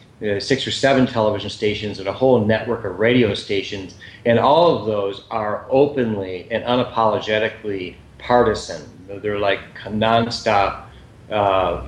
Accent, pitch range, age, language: American, 100-125 Hz, 40-59, English